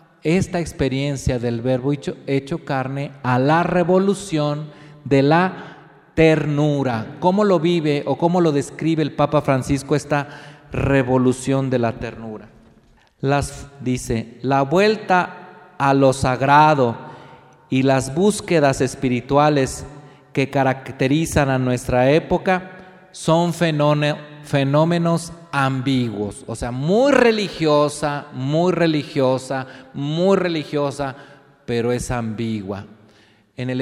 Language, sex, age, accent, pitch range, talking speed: Spanish, male, 40-59, Mexican, 125-165 Hz, 105 wpm